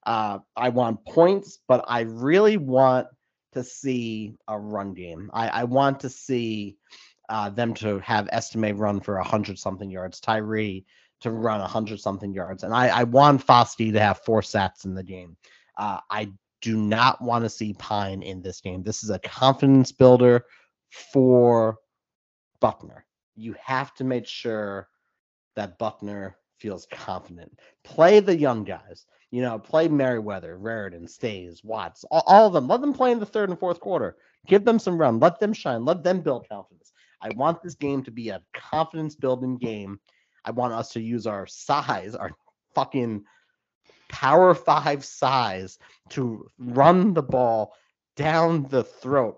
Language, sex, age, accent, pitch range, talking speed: English, male, 40-59, American, 105-135 Hz, 165 wpm